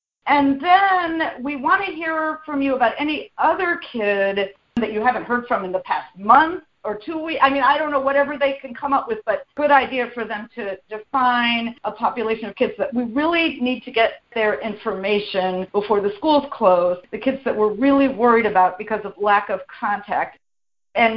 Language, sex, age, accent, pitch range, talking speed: English, female, 50-69, American, 205-275 Hz, 200 wpm